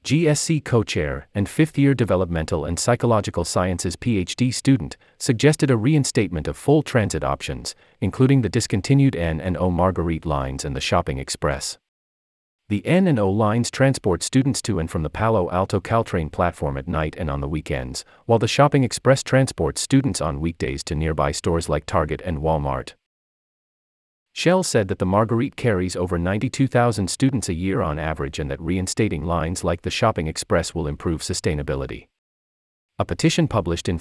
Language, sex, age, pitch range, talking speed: English, male, 40-59, 80-120 Hz, 155 wpm